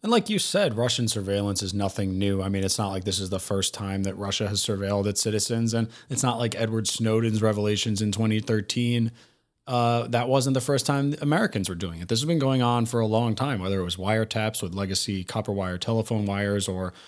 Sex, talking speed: male, 225 wpm